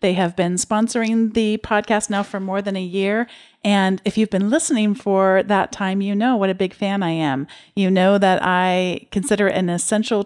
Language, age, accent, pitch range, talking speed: English, 40-59, American, 175-215 Hz, 210 wpm